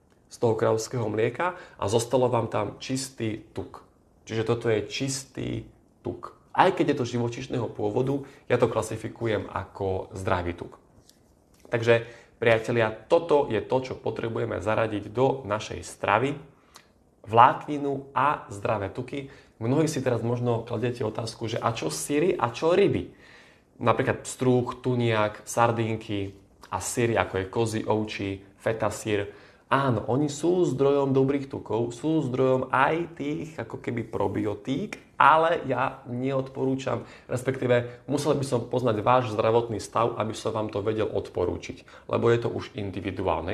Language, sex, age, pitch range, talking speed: Slovak, male, 20-39, 110-130 Hz, 140 wpm